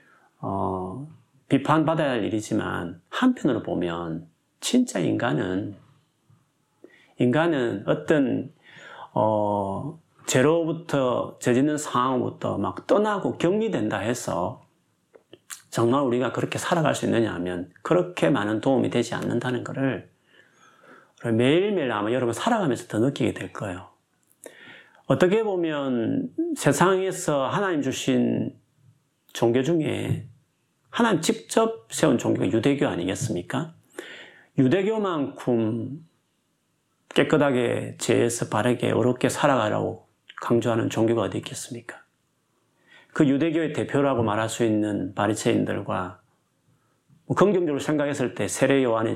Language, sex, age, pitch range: Korean, male, 30-49, 110-150 Hz